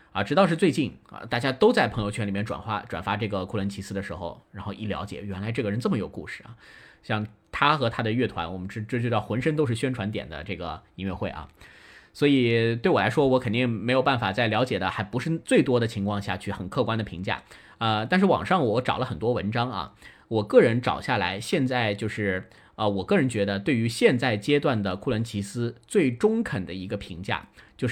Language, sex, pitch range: Chinese, male, 100-130 Hz